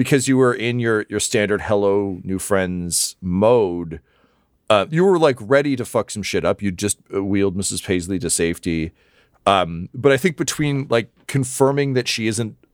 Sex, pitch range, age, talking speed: male, 85-125 Hz, 40-59, 180 wpm